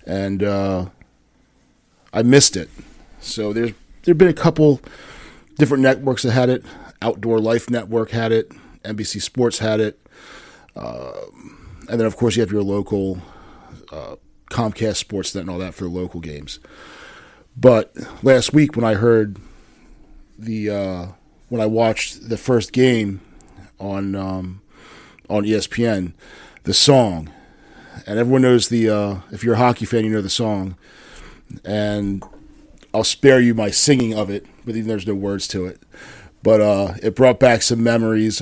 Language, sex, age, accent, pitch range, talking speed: English, male, 40-59, American, 100-120 Hz, 155 wpm